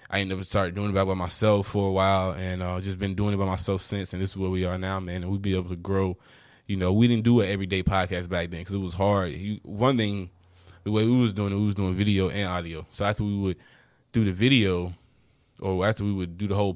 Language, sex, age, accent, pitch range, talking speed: English, male, 20-39, American, 90-105 Hz, 275 wpm